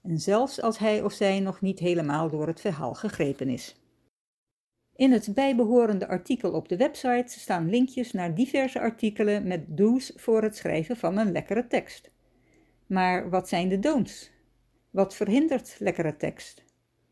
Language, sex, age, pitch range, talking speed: Dutch, female, 60-79, 175-235 Hz, 155 wpm